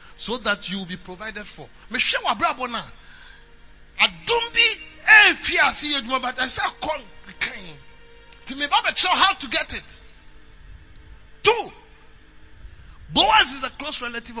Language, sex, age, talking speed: English, male, 30-49, 70 wpm